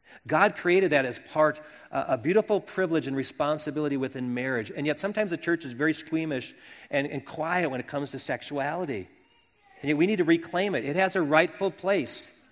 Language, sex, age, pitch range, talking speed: English, male, 40-59, 140-180 Hz, 195 wpm